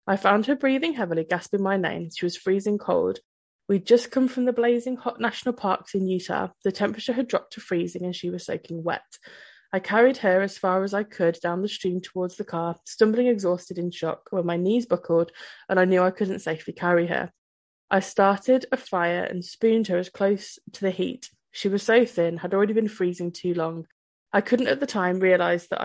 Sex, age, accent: female, 20-39, British